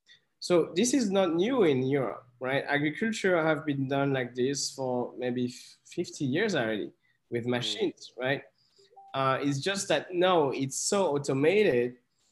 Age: 20-39